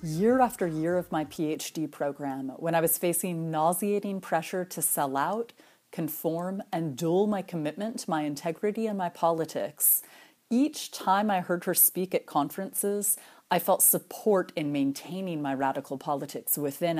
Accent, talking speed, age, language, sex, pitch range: American, 155 wpm, 30-49, English, female, 150-195 Hz